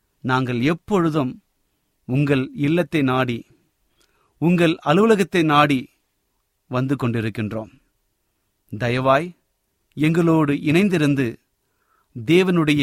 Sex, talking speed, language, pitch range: male, 65 wpm, Tamil, 115-155 Hz